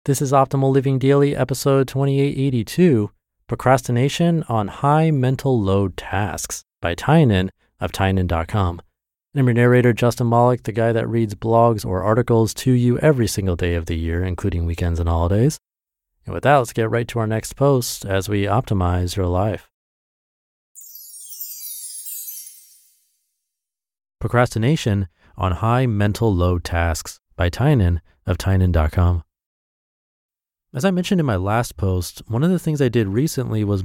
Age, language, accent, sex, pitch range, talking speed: 30-49, English, American, male, 90-125 Hz, 145 wpm